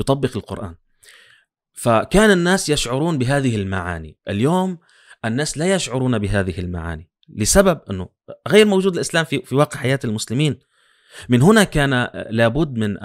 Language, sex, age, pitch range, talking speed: Arabic, male, 30-49, 100-130 Hz, 125 wpm